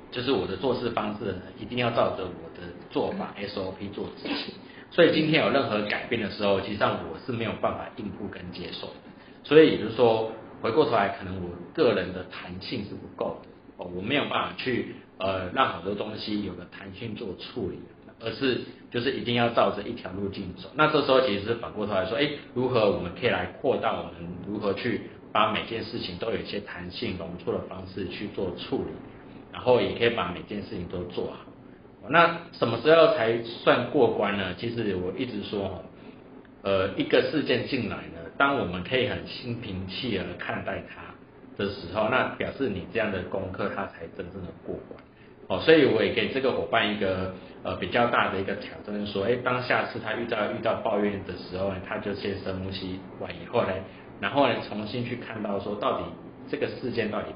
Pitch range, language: 95-120 Hz, Chinese